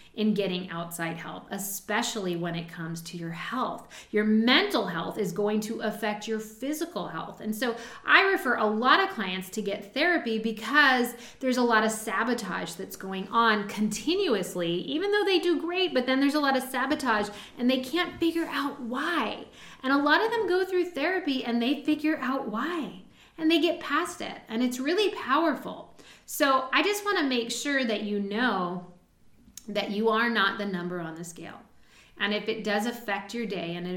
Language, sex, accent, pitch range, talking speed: English, female, American, 195-270 Hz, 195 wpm